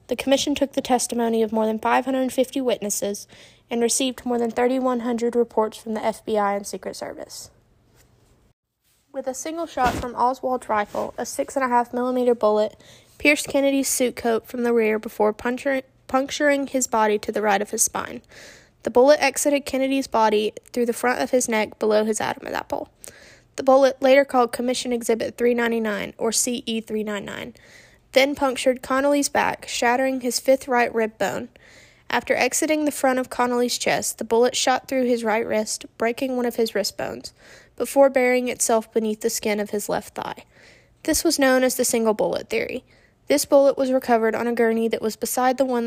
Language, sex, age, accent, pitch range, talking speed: English, female, 10-29, American, 225-265 Hz, 175 wpm